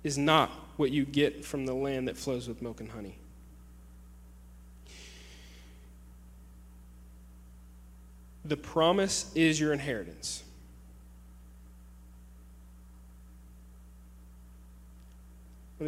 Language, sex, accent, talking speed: English, male, American, 75 wpm